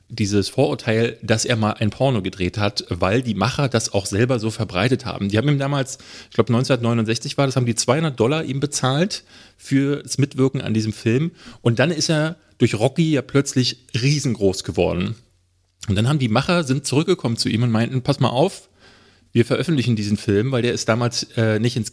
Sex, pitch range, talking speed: male, 105-135 Hz, 200 wpm